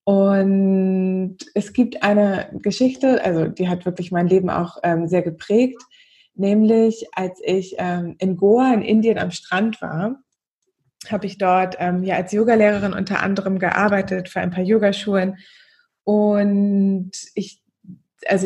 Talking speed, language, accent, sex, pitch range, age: 140 wpm, German, German, female, 180-210 Hz, 20-39